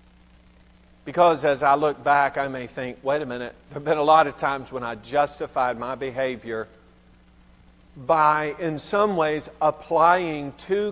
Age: 50-69